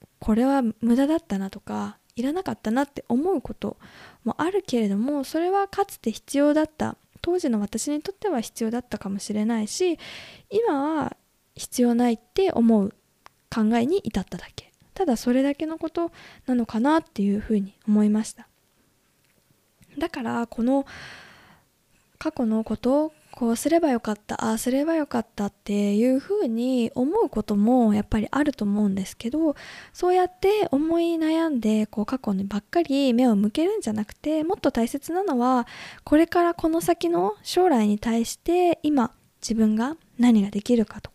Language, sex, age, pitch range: Japanese, female, 20-39, 220-320 Hz